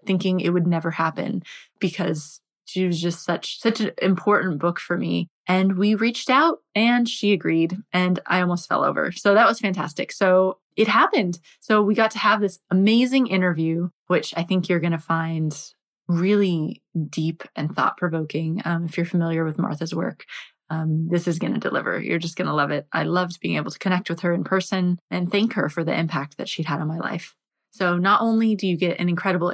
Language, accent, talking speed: English, American, 210 wpm